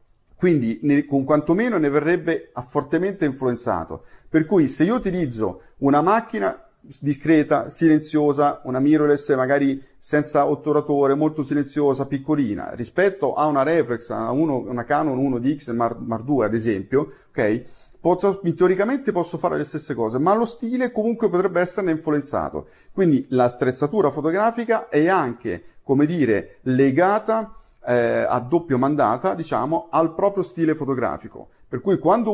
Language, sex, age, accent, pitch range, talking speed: Italian, male, 40-59, native, 130-165 Hz, 140 wpm